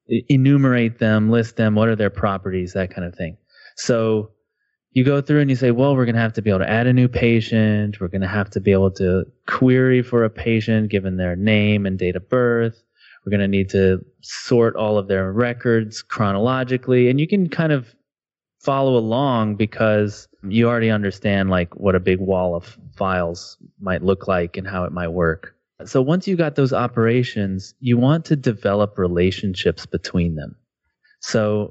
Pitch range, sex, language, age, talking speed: 100-125 Hz, male, English, 20-39, 195 wpm